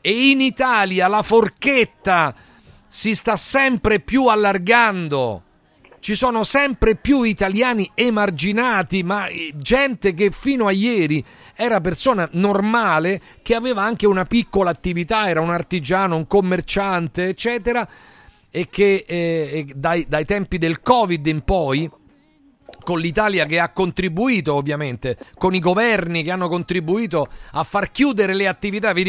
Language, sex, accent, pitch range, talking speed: Italian, male, native, 170-220 Hz, 130 wpm